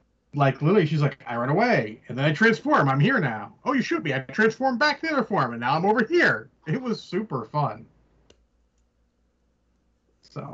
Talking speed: 200 wpm